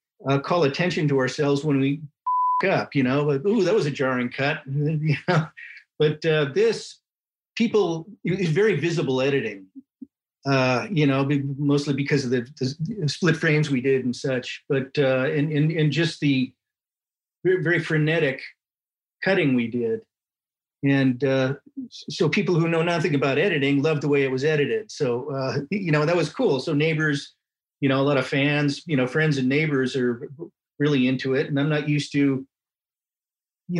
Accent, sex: American, male